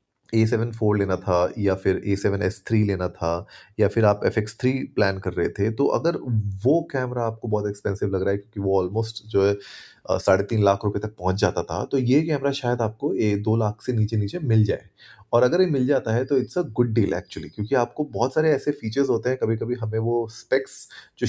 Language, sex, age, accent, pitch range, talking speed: Hindi, male, 30-49, native, 105-140 Hz, 230 wpm